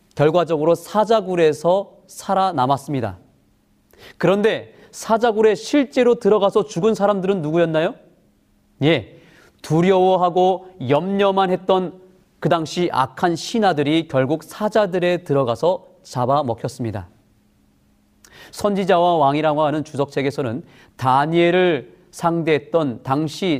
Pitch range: 130-195 Hz